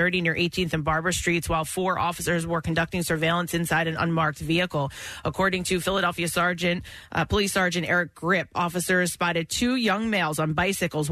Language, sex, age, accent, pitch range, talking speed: English, female, 30-49, American, 160-180 Hz, 165 wpm